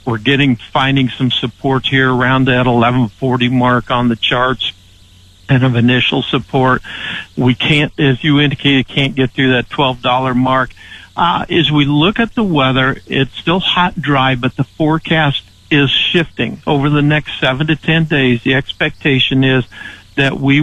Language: English